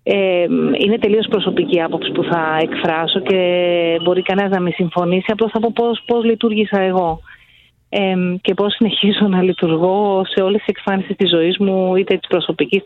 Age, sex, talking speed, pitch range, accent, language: 30-49, female, 165 wpm, 175-205 Hz, native, Greek